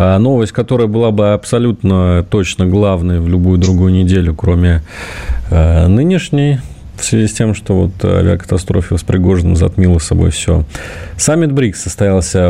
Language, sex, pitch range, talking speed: Russian, male, 90-115 Hz, 130 wpm